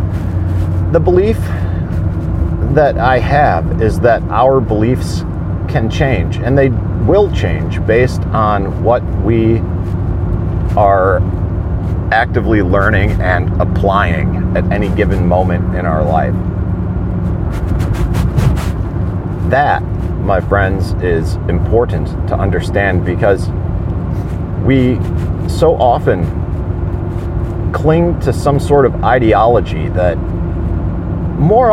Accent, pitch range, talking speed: American, 85-100 Hz, 95 wpm